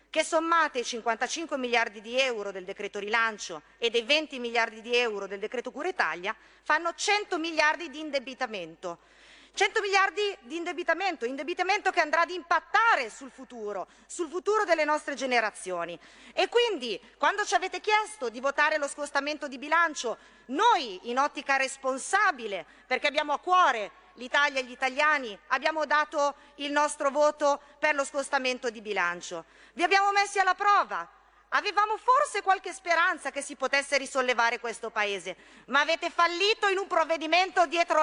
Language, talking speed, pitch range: Italian, 155 wpm, 245-350 Hz